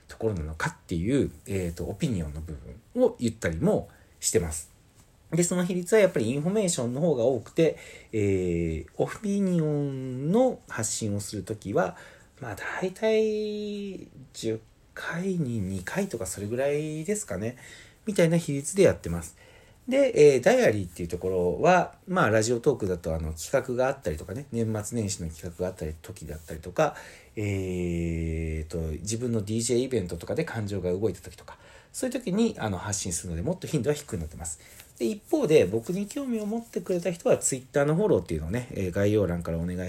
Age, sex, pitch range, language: 40-59, male, 90-145 Hz, Japanese